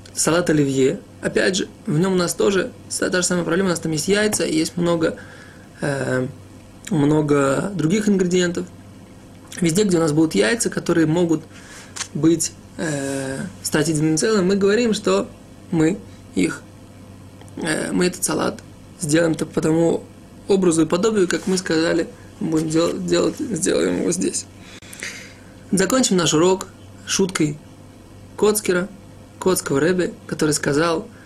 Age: 20-39